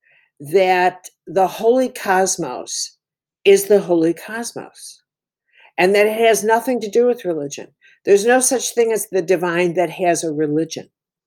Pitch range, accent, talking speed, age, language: 170-225 Hz, American, 150 wpm, 60-79, English